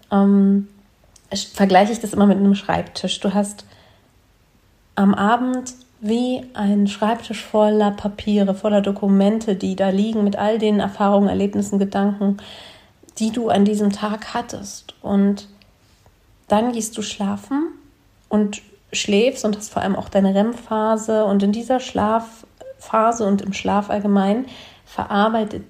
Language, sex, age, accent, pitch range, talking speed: German, female, 40-59, German, 195-220 Hz, 135 wpm